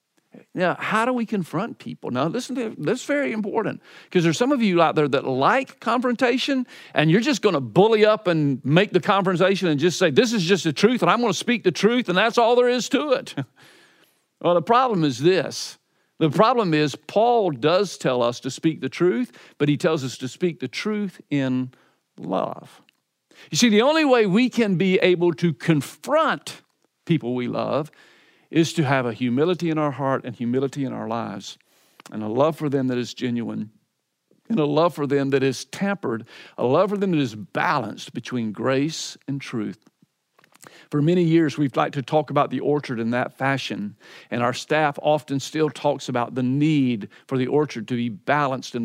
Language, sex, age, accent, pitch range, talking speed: English, male, 50-69, American, 135-200 Hz, 200 wpm